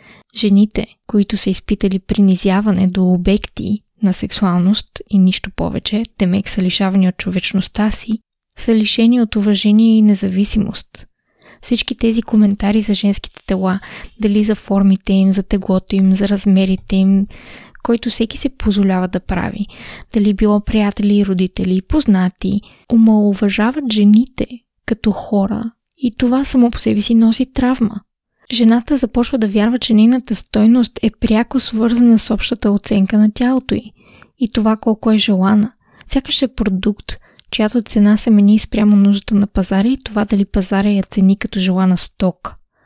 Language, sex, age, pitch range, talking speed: Bulgarian, female, 20-39, 200-225 Hz, 150 wpm